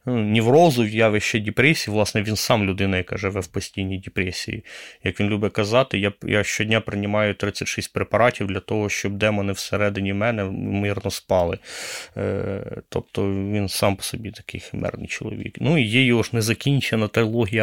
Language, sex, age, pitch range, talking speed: Ukrainian, male, 30-49, 105-125 Hz, 155 wpm